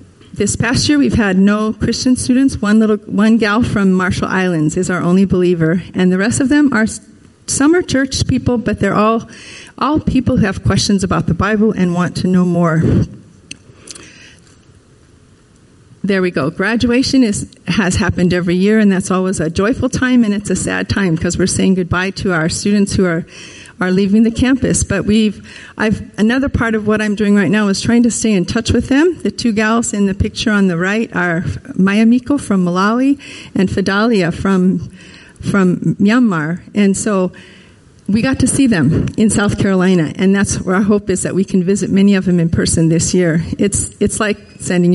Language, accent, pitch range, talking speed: English, American, 180-220 Hz, 195 wpm